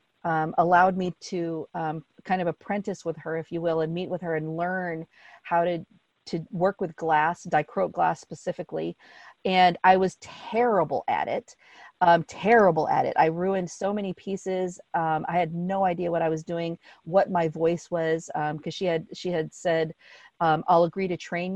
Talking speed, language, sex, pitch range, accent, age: 190 wpm, English, female, 165-190 Hz, American, 40-59